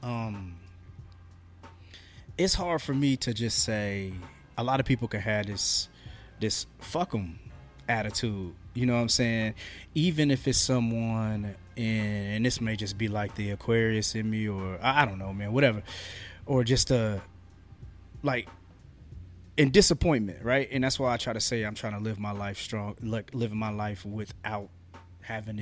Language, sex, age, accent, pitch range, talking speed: English, male, 20-39, American, 100-130 Hz, 170 wpm